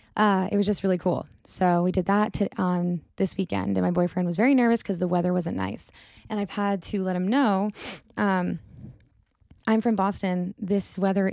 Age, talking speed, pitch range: 10-29, 205 wpm, 180-205 Hz